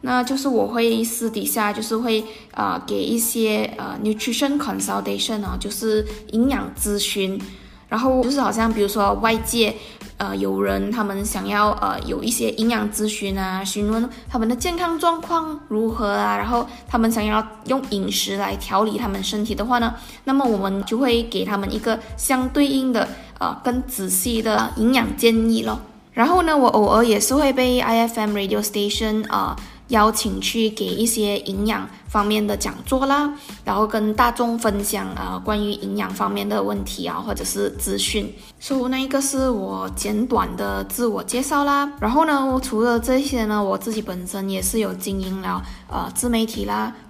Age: 10-29